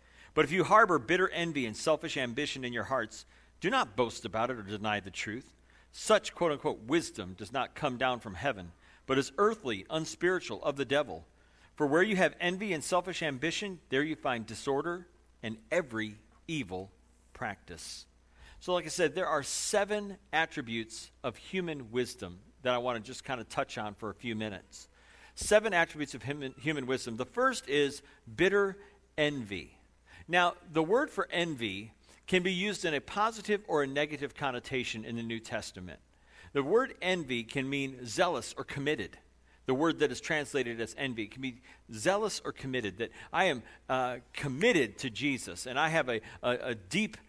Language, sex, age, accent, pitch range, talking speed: English, male, 50-69, American, 110-170 Hz, 180 wpm